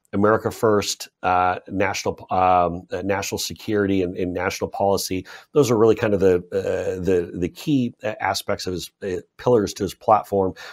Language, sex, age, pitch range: English, male, 40-59, 90-120 Hz